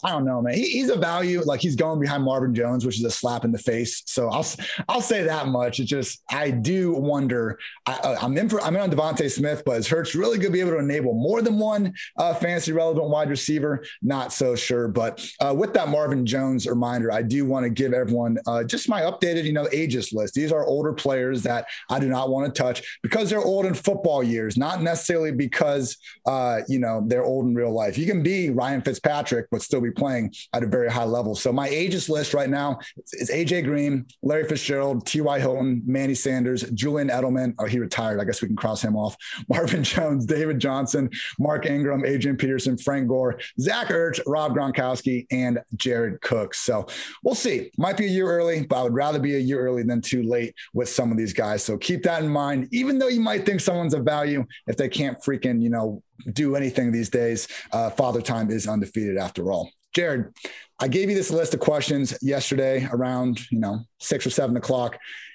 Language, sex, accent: English, male, American